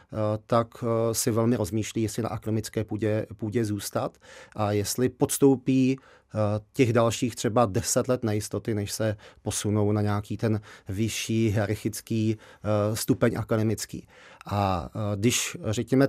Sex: male